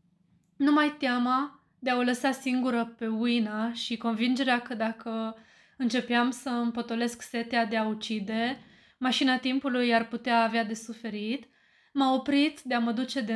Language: Romanian